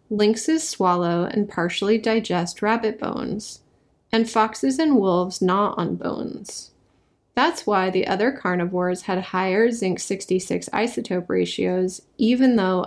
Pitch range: 185-230 Hz